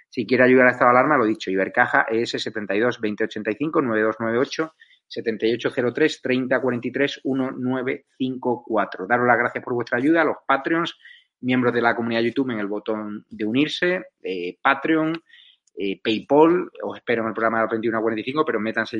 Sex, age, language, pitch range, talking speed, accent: male, 30-49, Spanish, 105-125 Hz, 150 wpm, Spanish